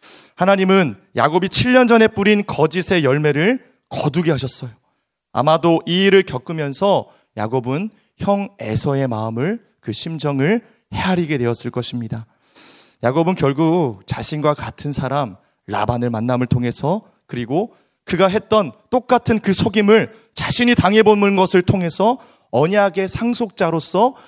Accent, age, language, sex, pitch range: native, 30-49, Korean, male, 125-195 Hz